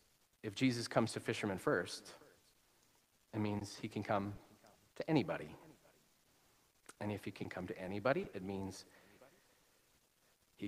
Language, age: English, 40-59